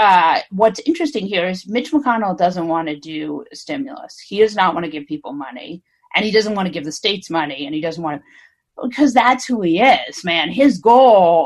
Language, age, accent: English, 40-59, American